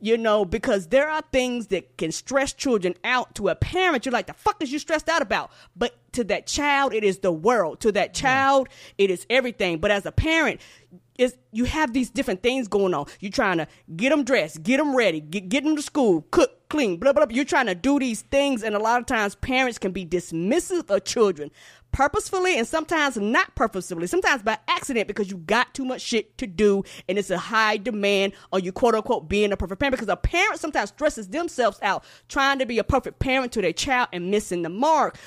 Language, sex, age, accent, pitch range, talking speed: English, female, 20-39, American, 200-275 Hz, 225 wpm